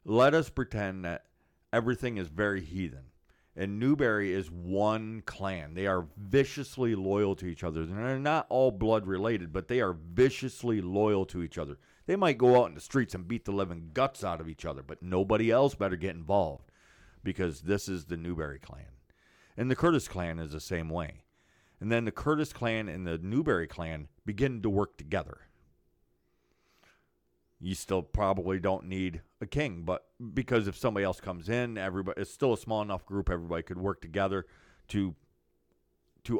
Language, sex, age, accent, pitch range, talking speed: English, male, 50-69, American, 85-110 Hz, 180 wpm